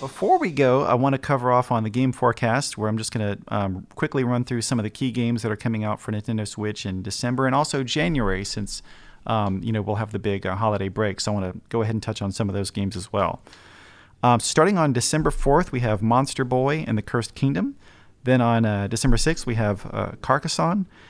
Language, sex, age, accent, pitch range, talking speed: English, male, 40-59, American, 105-130 Hz, 245 wpm